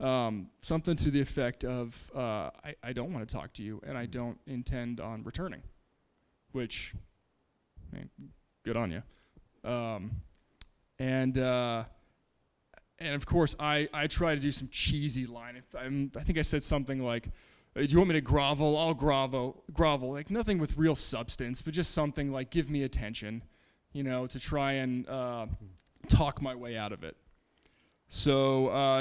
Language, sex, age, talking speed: English, male, 20-39, 165 wpm